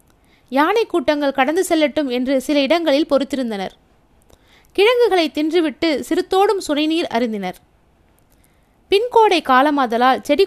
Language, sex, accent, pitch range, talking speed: Tamil, female, native, 255-330 Hz, 90 wpm